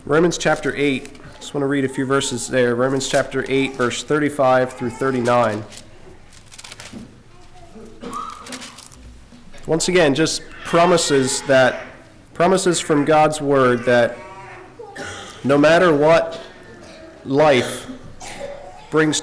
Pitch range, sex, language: 130-165 Hz, male, English